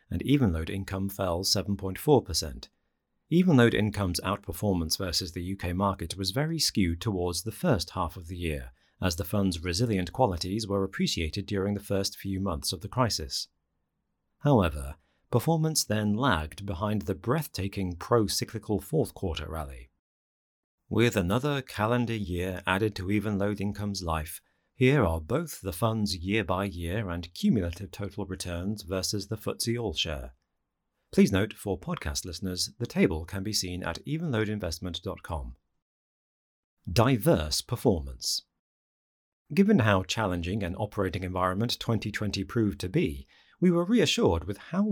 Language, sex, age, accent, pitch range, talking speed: English, male, 40-59, British, 85-110 Hz, 135 wpm